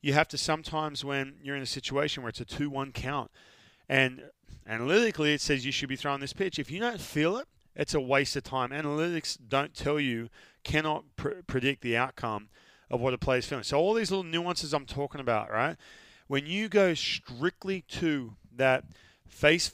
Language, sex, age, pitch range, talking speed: English, male, 30-49, 125-145 Hz, 195 wpm